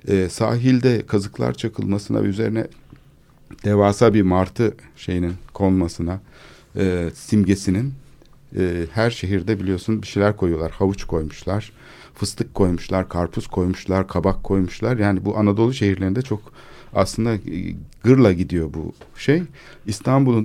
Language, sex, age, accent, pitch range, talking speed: Turkish, male, 60-79, native, 95-120 Hz, 115 wpm